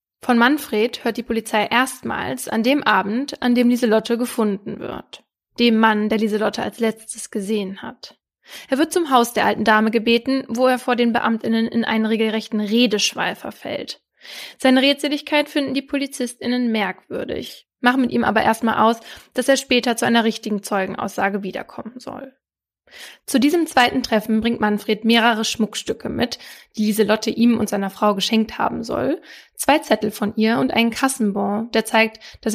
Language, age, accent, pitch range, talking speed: German, 20-39, German, 220-255 Hz, 165 wpm